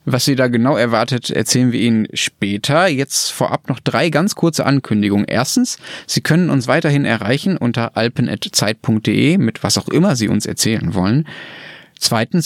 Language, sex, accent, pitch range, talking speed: German, male, German, 115-145 Hz, 160 wpm